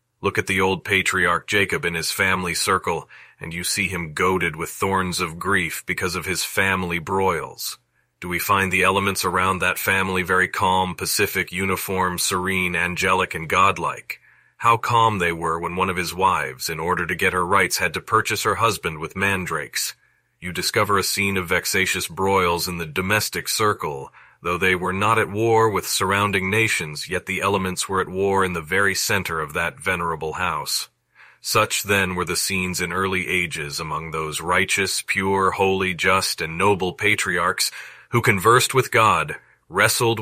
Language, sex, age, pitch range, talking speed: English, male, 40-59, 90-105 Hz, 175 wpm